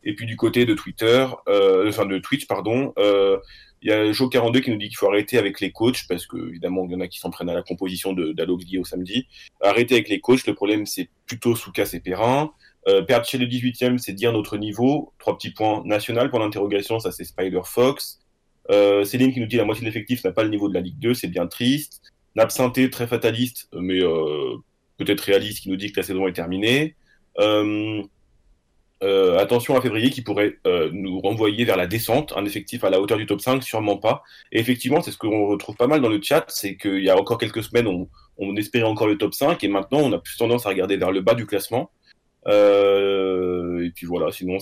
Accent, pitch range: French, 95-125 Hz